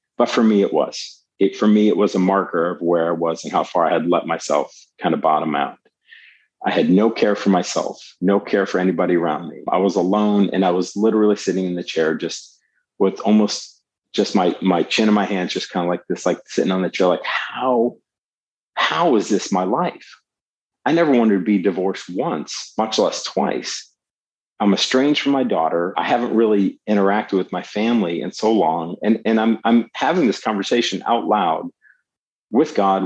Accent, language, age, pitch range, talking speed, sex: American, English, 40-59, 95-115 Hz, 205 wpm, male